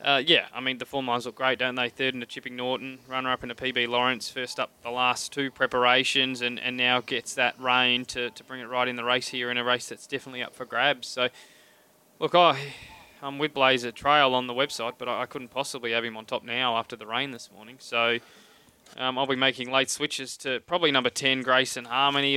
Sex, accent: male, Australian